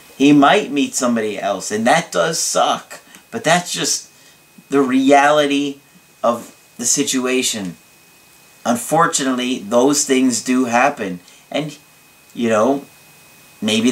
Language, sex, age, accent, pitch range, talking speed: English, male, 40-59, American, 125-165 Hz, 110 wpm